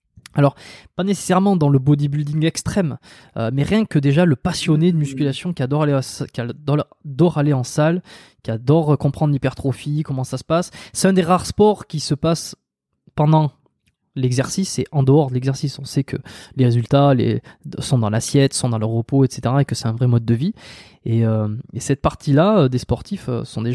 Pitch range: 120-155 Hz